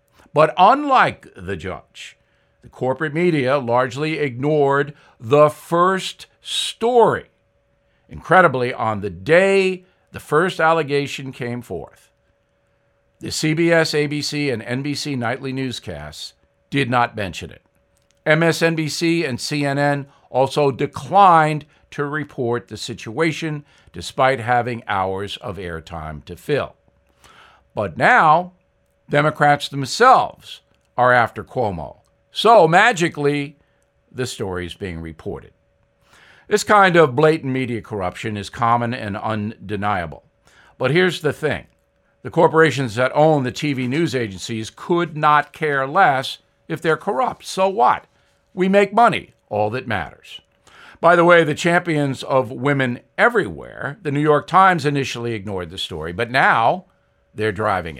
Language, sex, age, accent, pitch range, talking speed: English, male, 60-79, American, 115-155 Hz, 125 wpm